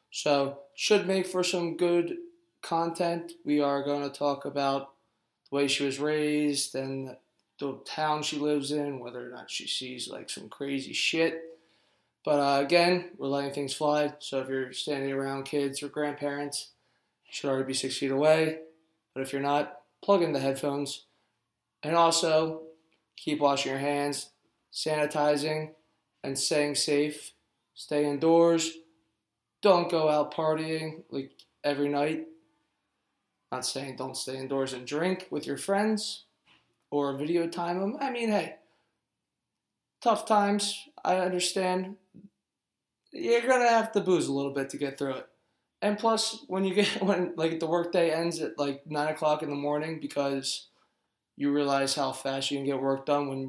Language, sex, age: English, male, 20-39